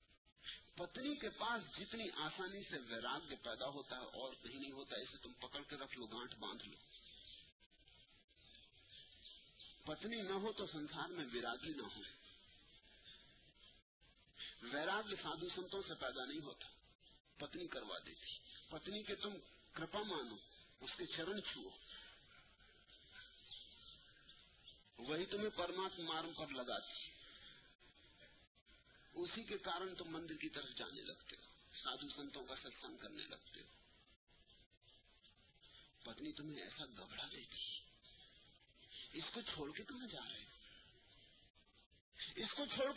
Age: 50-69